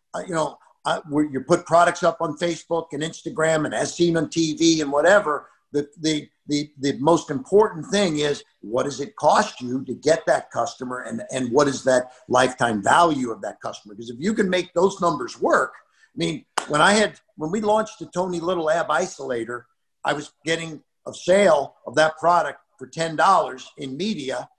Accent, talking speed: American, 195 wpm